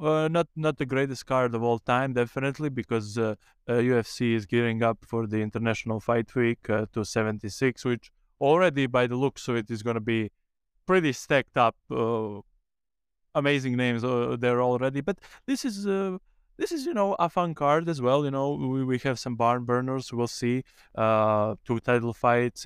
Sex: male